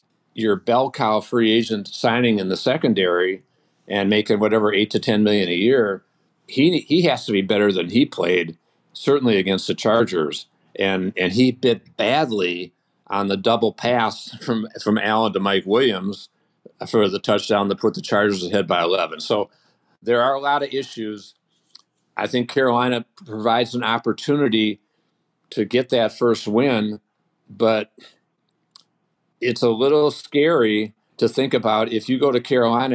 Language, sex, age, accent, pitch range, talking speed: English, male, 50-69, American, 105-120 Hz, 160 wpm